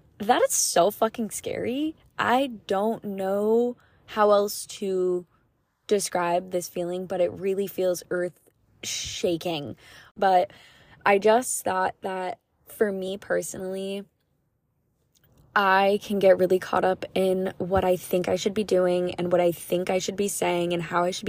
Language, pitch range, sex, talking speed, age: English, 180-215 Hz, female, 150 wpm, 20-39